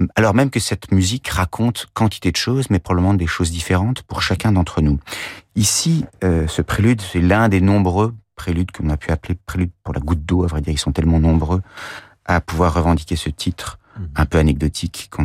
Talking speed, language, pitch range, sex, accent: 200 wpm, French, 80-100 Hz, male, French